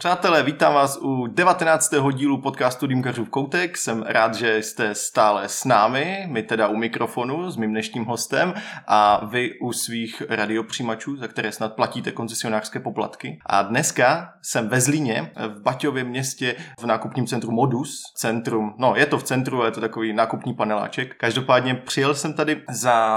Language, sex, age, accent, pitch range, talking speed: Czech, male, 20-39, native, 110-130 Hz, 165 wpm